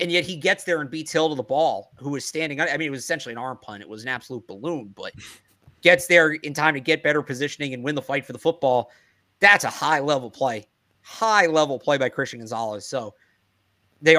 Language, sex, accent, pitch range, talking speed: English, male, American, 130-165 Hz, 235 wpm